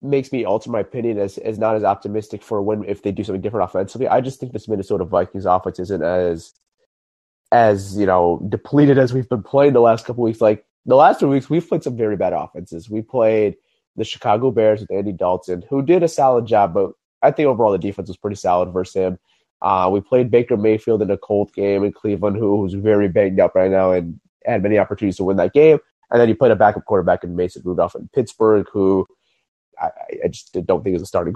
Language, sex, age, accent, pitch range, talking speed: English, male, 30-49, American, 95-130 Hz, 235 wpm